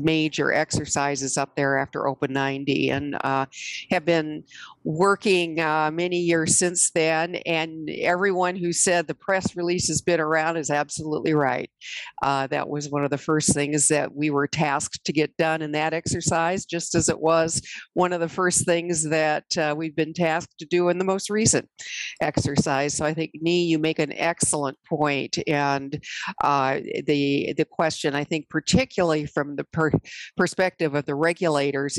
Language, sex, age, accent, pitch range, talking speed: English, female, 50-69, American, 145-170 Hz, 175 wpm